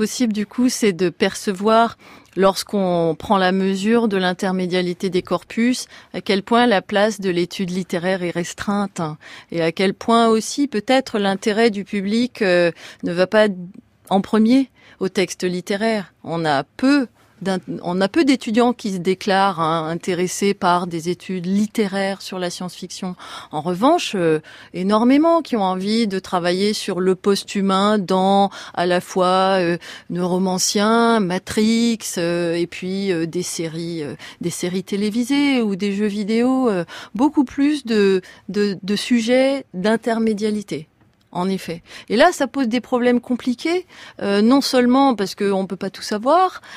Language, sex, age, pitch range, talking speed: French, female, 30-49, 180-225 Hz, 150 wpm